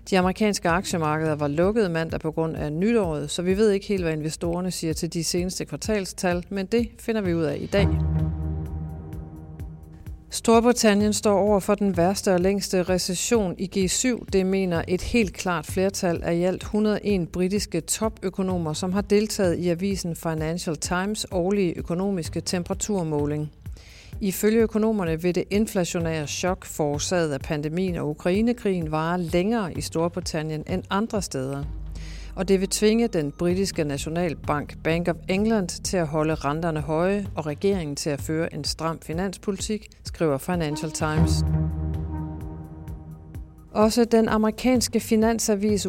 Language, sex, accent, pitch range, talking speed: Danish, female, native, 155-200 Hz, 145 wpm